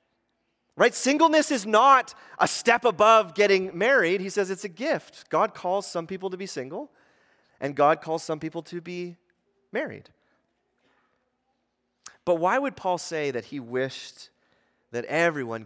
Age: 30-49